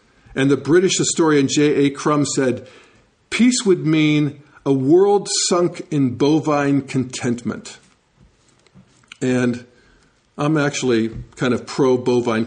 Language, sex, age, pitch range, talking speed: English, male, 50-69, 125-160 Hz, 105 wpm